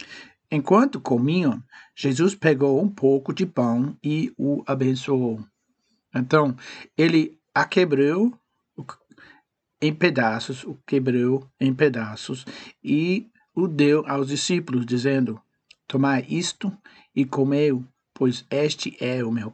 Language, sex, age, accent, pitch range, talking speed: Portuguese, male, 60-79, Brazilian, 130-160 Hz, 110 wpm